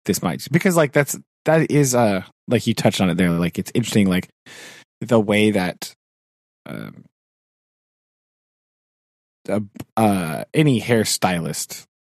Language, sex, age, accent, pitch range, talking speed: English, male, 20-39, American, 100-140 Hz, 130 wpm